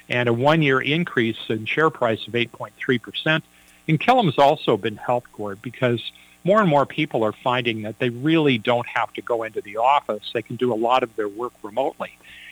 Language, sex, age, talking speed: English, male, 50-69, 200 wpm